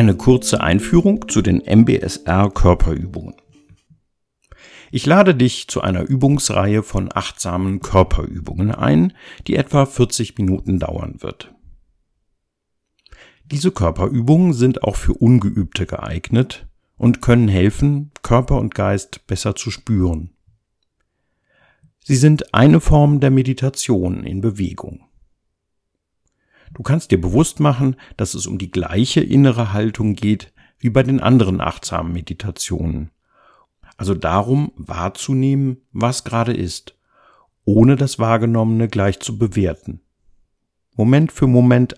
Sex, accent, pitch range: male, German, 90-125 Hz